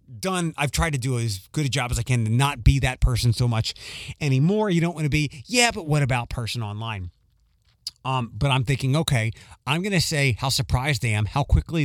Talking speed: 235 wpm